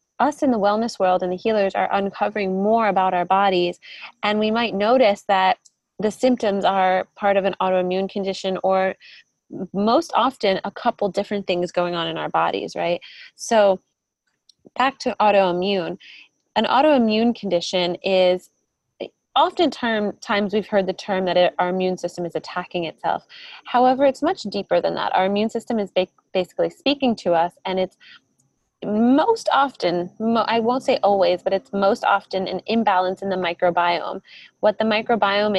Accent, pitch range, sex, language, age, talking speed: American, 185-220 Hz, female, English, 20-39, 165 wpm